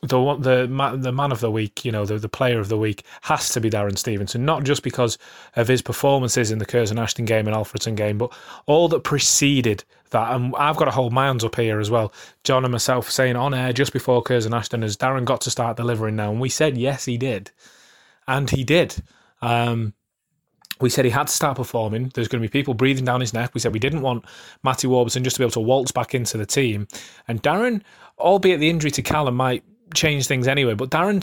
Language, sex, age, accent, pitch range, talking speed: English, male, 20-39, British, 115-140 Hz, 235 wpm